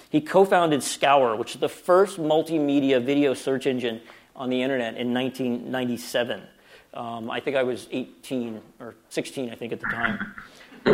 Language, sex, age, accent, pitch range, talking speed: English, male, 40-59, American, 125-160 Hz, 165 wpm